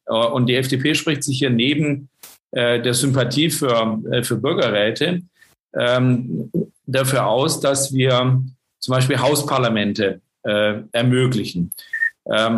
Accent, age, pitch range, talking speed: German, 50-69, 120-135 Hz, 120 wpm